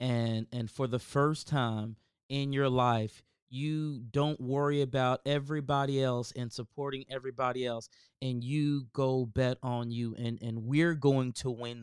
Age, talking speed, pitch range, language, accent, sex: 30-49, 155 wpm, 120-140 Hz, English, American, male